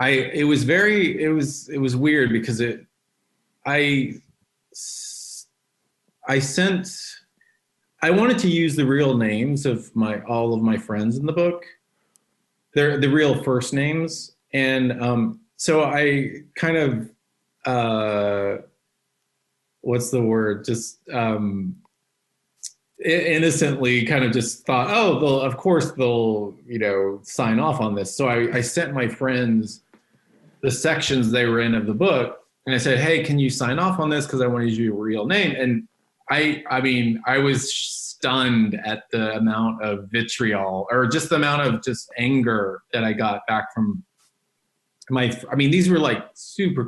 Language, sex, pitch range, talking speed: English, male, 115-150 Hz, 160 wpm